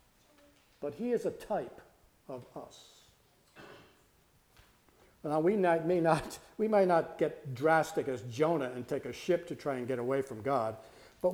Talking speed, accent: 150 wpm, American